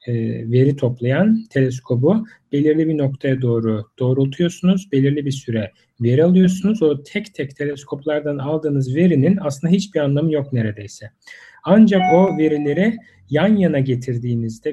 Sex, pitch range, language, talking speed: male, 125-155 Hz, Turkish, 120 wpm